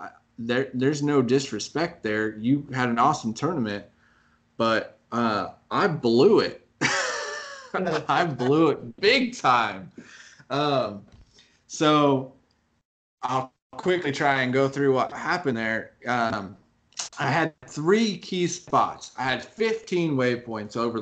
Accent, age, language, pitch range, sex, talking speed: American, 20-39, English, 115-140 Hz, male, 120 wpm